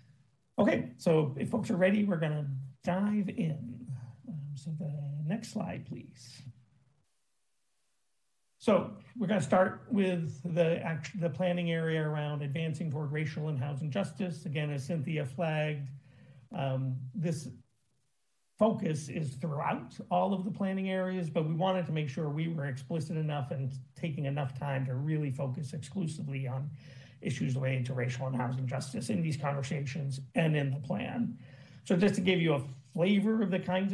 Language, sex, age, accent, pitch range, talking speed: English, male, 50-69, American, 135-170 Hz, 165 wpm